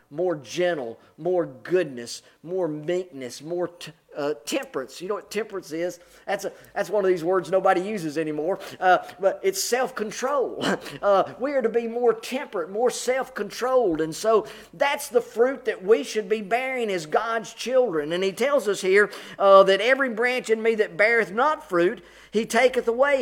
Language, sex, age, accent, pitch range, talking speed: English, male, 40-59, American, 175-235 Hz, 185 wpm